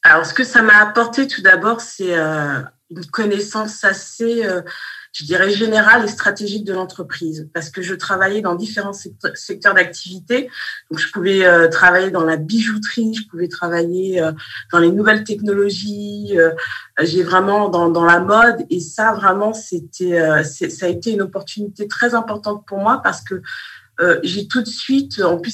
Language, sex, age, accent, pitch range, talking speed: French, female, 20-39, French, 170-215 Hz, 160 wpm